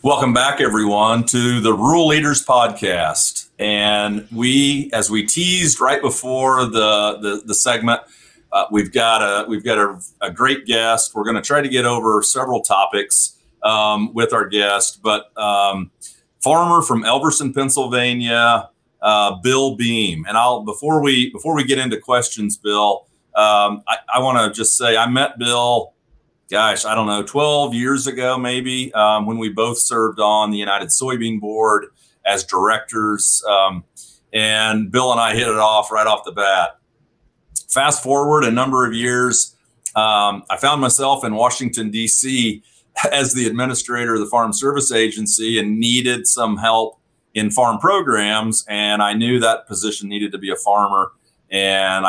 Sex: male